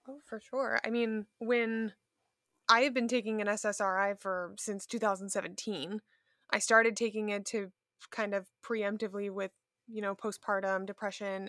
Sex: female